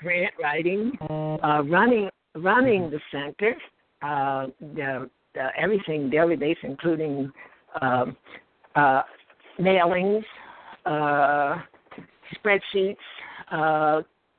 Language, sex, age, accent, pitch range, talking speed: English, female, 60-79, American, 150-185 Hz, 85 wpm